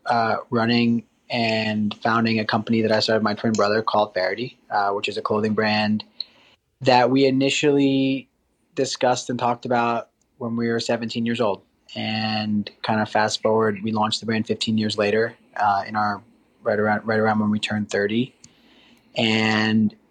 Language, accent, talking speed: English, American, 170 wpm